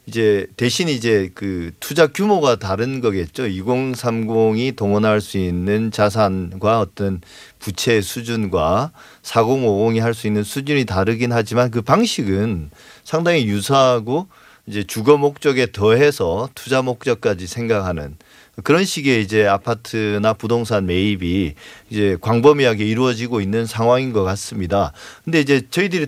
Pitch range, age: 105-145 Hz, 40-59